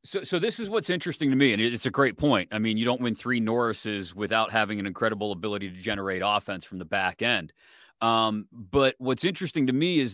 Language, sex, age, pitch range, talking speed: English, male, 30-49, 105-135 Hz, 230 wpm